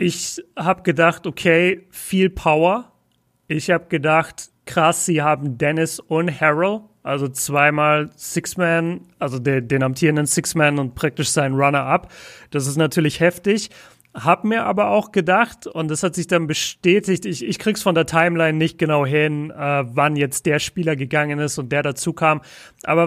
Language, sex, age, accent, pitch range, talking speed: German, male, 30-49, German, 155-190 Hz, 165 wpm